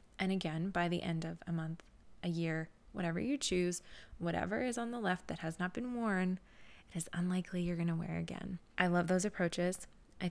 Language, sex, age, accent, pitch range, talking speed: English, female, 20-39, American, 175-200 Hz, 210 wpm